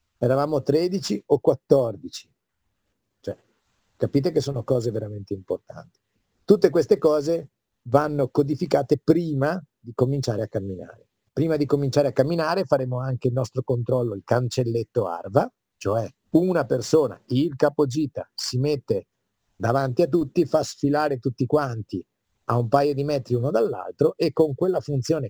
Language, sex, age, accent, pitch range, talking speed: Italian, male, 50-69, native, 120-155 Hz, 140 wpm